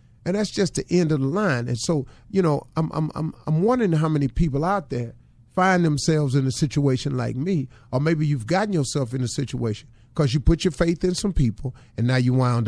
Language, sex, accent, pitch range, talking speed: English, male, American, 115-140 Hz, 230 wpm